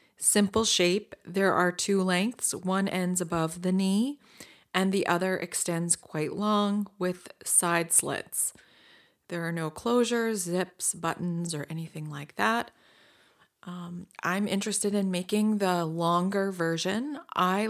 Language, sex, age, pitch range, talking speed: English, female, 30-49, 175-205 Hz, 130 wpm